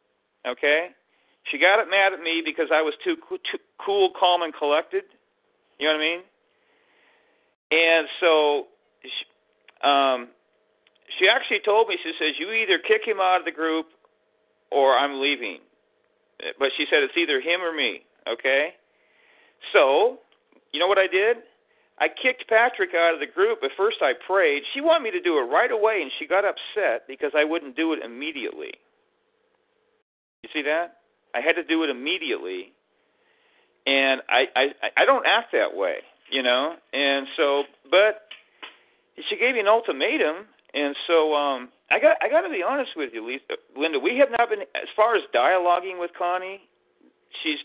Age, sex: 40-59, male